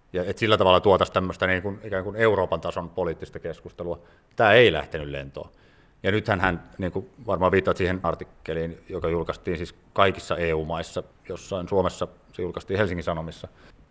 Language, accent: Finnish, native